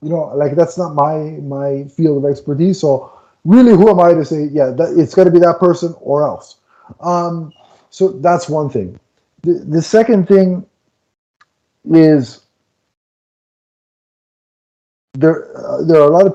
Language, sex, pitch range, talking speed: English, male, 135-175 Hz, 160 wpm